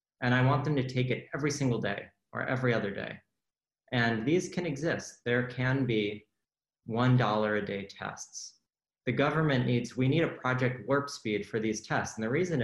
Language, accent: English, American